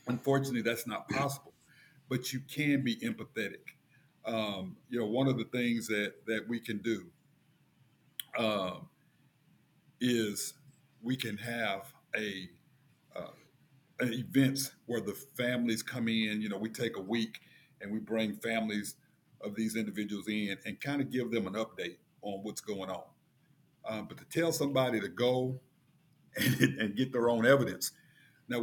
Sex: male